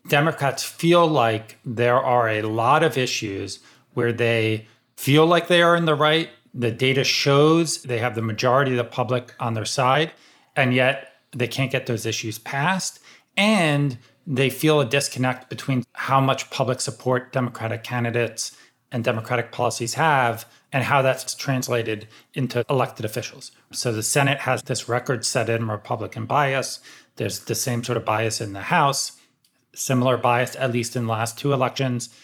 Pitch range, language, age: 115-135 Hz, English, 30-49